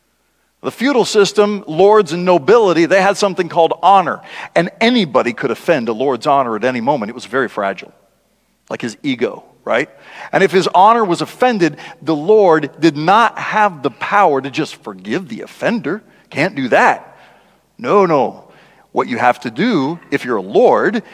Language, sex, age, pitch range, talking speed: English, male, 40-59, 155-220 Hz, 175 wpm